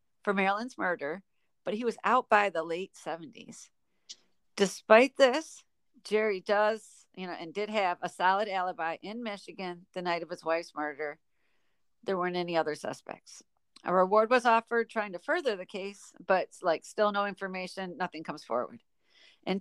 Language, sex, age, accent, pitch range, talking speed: English, female, 40-59, American, 175-210 Hz, 165 wpm